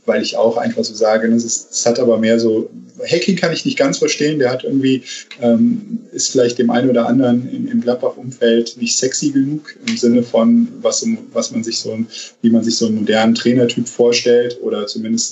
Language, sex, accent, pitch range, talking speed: German, male, German, 115-165 Hz, 210 wpm